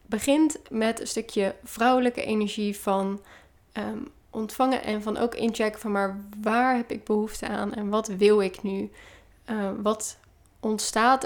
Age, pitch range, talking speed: 10-29, 205-240 Hz, 145 wpm